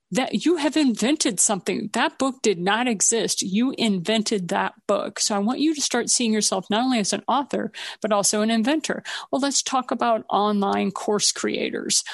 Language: English